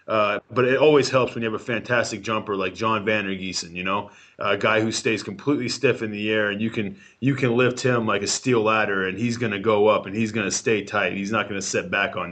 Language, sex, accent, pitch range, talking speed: English, male, American, 105-125 Hz, 285 wpm